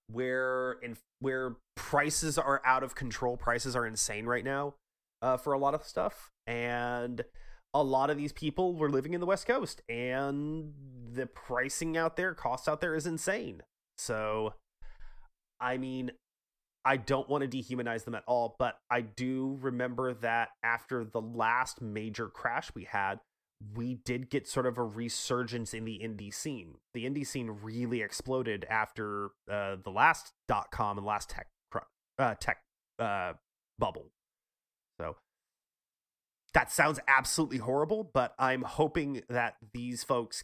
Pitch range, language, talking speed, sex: 115-140 Hz, English, 155 wpm, male